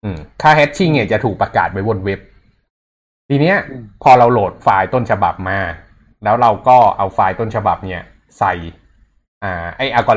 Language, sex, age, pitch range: Thai, male, 20-39, 95-120 Hz